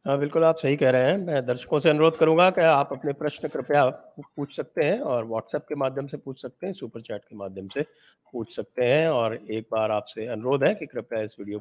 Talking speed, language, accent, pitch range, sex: 240 wpm, English, Indian, 110-145 Hz, male